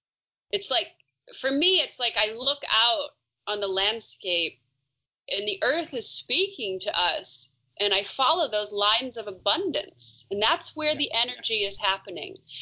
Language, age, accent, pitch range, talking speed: English, 30-49, American, 200-310 Hz, 155 wpm